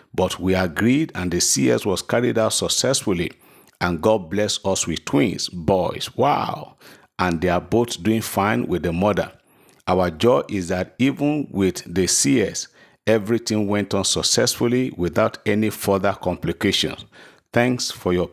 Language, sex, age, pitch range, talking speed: English, male, 50-69, 95-115 Hz, 150 wpm